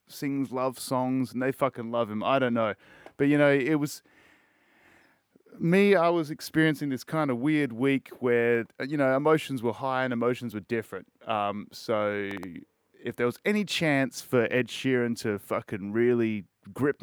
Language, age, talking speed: English, 30-49, 175 wpm